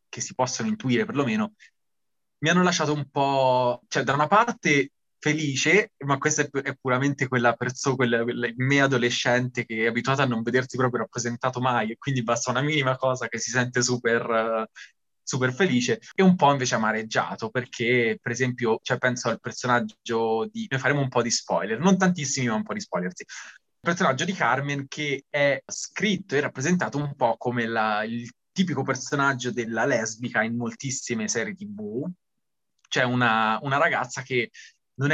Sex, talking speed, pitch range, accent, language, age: male, 170 wpm, 120-150 Hz, native, Italian, 20-39